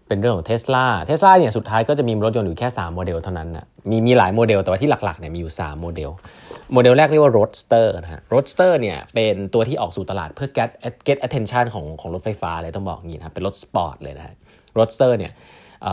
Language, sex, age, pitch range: Thai, male, 20-39, 90-115 Hz